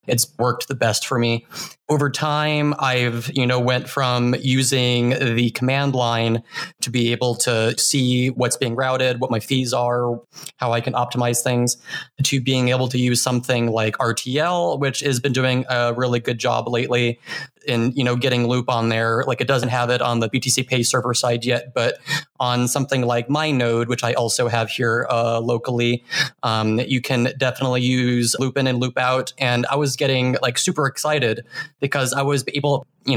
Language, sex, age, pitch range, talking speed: English, male, 20-39, 120-135 Hz, 190 wpm